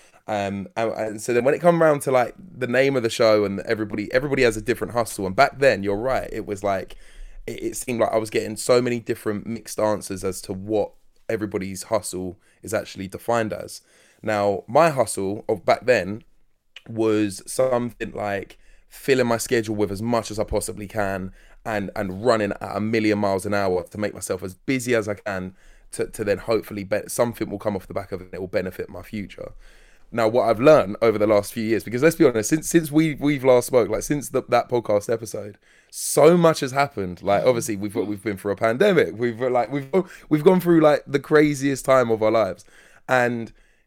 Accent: British